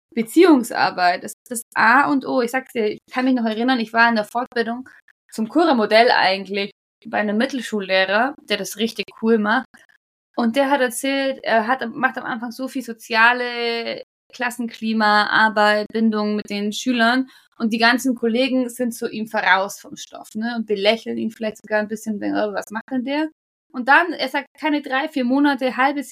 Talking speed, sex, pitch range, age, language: 190 wpm, female, 220-260 Hz, 20-39, German